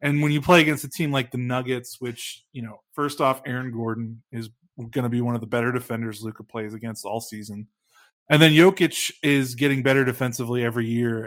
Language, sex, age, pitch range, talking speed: English, male, 20-39, 115-135 Hz, 215 wpm